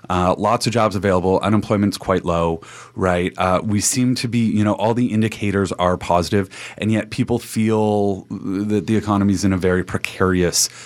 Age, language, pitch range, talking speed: 30-49, English, 100-120 Hz, 170 wpm